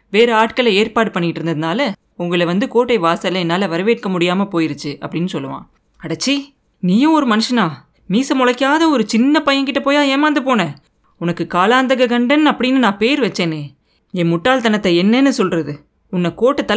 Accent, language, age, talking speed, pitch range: native, Tamil, 20-39, 130 wpm, 175-250 Hz